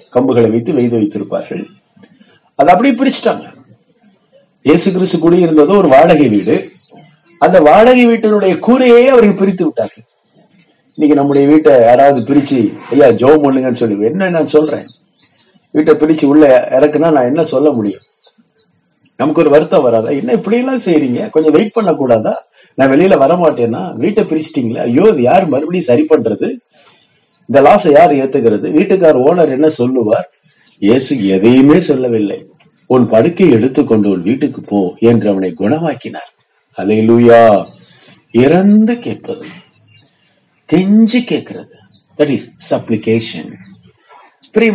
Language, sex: Tamil, male